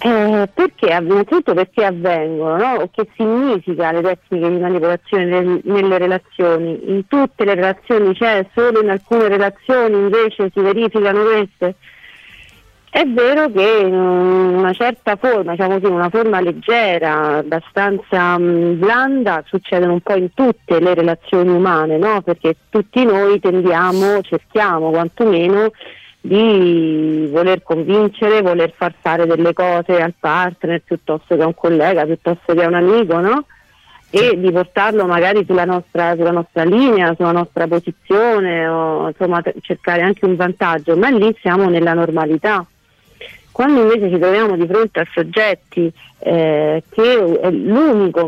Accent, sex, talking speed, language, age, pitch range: native, female, 140 wpm, Italian, 40-59, 170-210 Hz